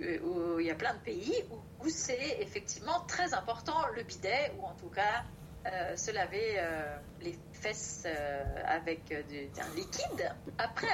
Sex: female